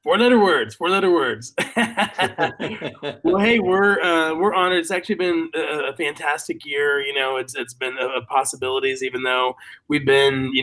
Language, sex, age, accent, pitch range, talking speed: English, male, 20-39, American, 125-175 Hz, 165 wpm